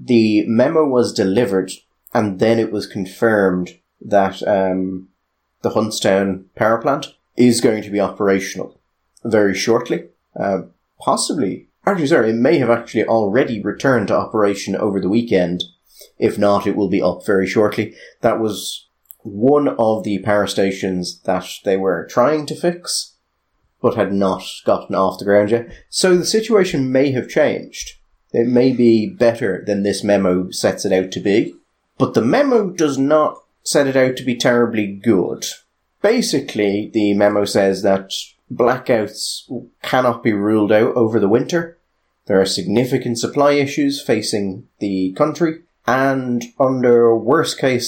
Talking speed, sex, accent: 150 wpm, male, British